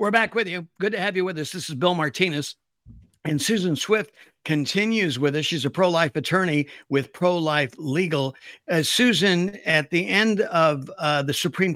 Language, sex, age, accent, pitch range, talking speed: English, male, 60-79, American, 140-170 Hz, 185 wpm